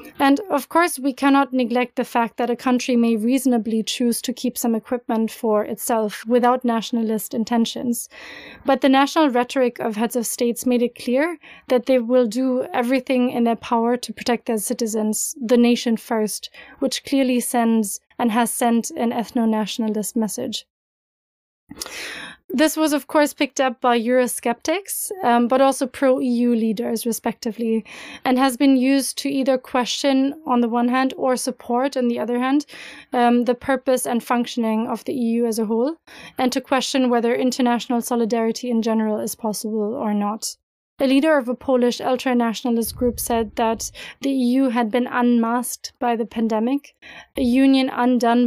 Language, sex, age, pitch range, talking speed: English, female, 30-49, 230-255 Hz, 165 wpm